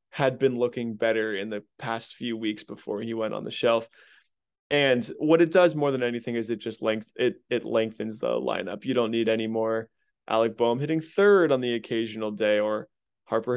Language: English